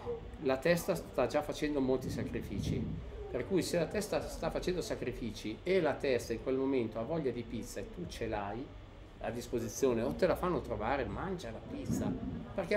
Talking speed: 190 wpm